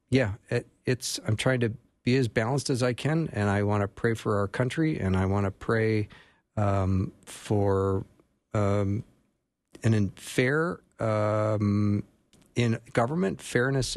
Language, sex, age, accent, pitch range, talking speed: English, male, 50-69, American, 100-125 Hz, 145 wpm